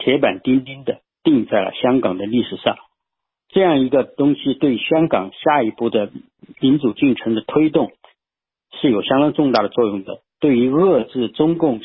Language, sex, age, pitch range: Chinese, male, 50-69, 115-150 Hz